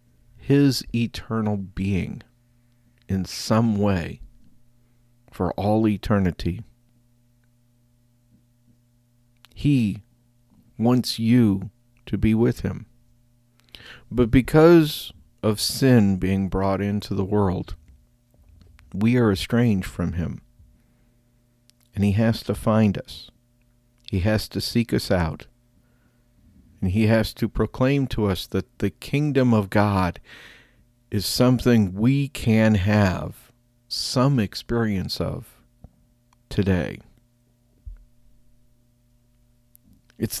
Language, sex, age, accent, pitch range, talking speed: English, male, 50-69, American, 100-120 Hz, 95 wpm